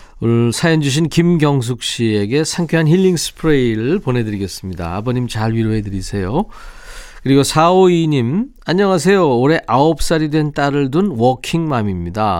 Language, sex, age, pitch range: Korean, male, 40-59, 115-160 Hz